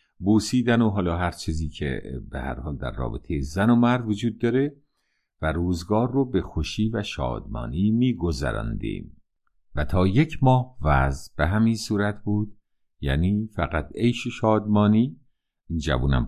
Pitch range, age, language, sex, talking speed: 75-115 Hz, 50-69, Persian, male, 145 wpm